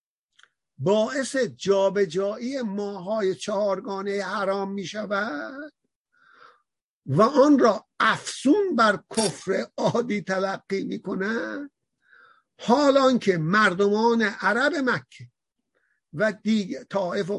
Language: Persian